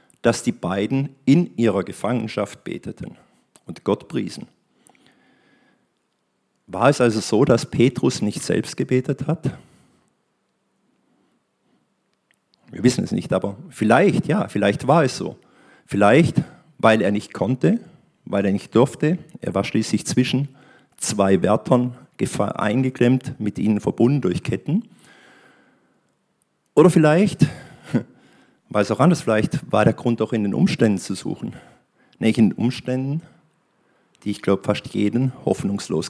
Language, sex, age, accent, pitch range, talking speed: German, male, 50-69, German, 105-145 Hz, 130 wpm